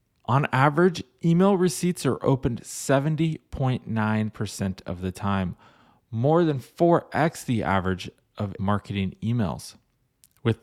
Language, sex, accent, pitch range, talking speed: English, male, American, 110-150 Hz, 105 wpm